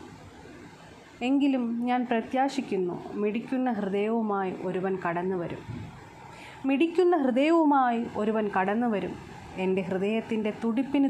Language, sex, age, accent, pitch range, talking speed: Malayalam, female, 30-49, native, 195-235 Hz, 85 wpm